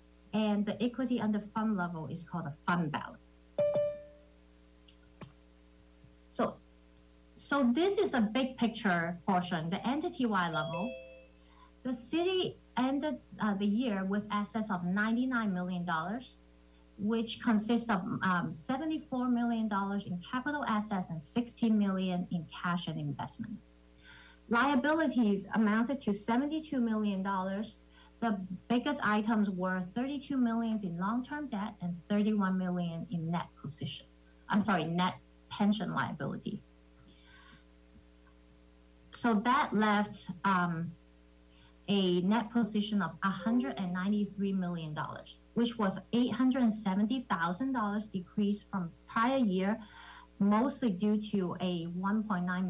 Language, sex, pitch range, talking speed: English, female, 165-230 Hz, 115 wpm